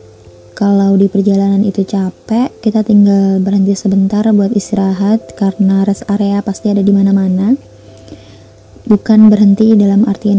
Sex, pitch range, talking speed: female, 195-210 Hz, 125 wpm